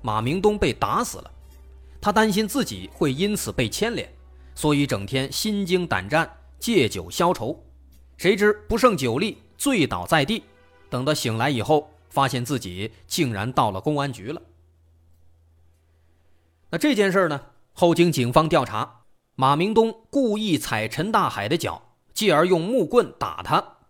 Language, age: Chinese, 30-49